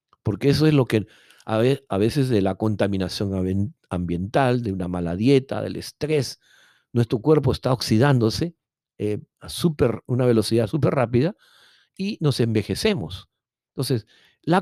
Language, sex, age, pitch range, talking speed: Spanish, male, 50-69, 100-130 Hz, 135 wpm